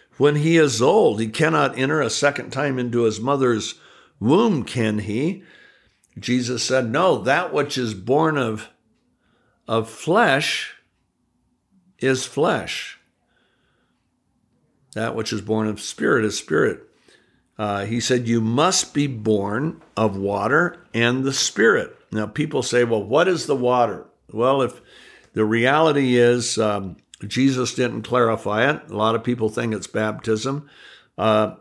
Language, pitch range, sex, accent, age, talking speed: English, 110-135 Hz, male, American, 60-79, 140 wpm